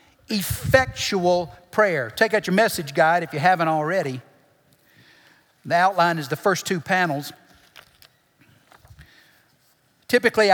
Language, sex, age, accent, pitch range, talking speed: English, male, 50-69, American, 150-200 Hz, 110 wpm